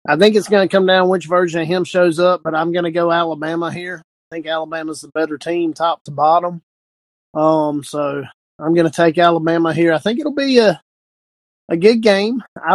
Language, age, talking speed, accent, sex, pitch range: English, 30-49, 215 wpm, American, male, 150-185 Hz